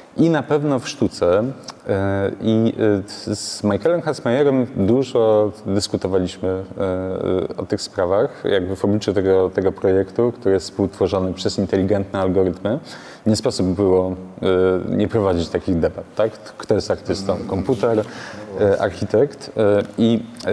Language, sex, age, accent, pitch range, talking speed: Polish, male, 30-49, native, 95-110 Hz, 115 wpm